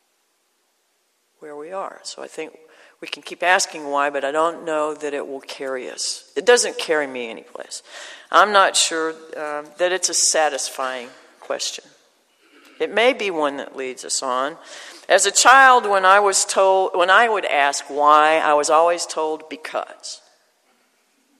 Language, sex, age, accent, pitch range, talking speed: English, female, 50-69, American, 155-230 Hz, 165 wpm